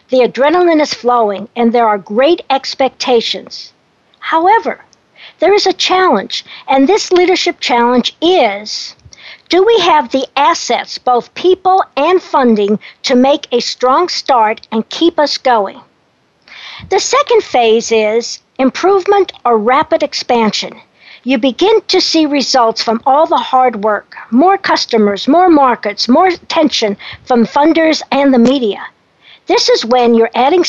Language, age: English, 60-79